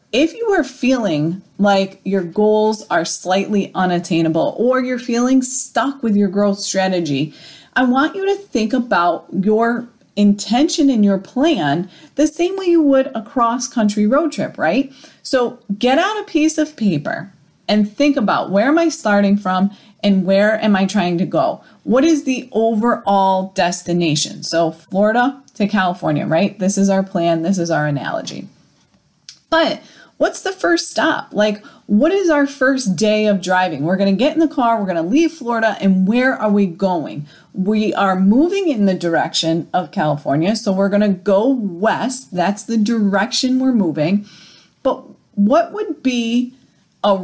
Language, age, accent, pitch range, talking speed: English, 30-49, American, 190-255 Hz, 170 wpm